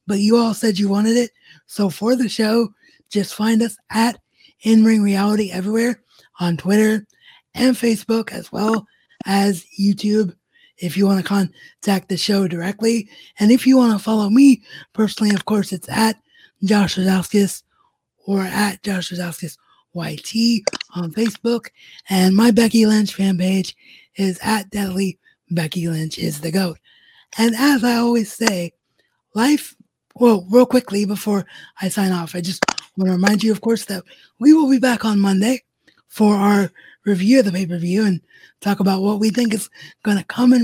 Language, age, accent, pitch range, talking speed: English, 20-39, American, 190-230 Hz, 170 wpm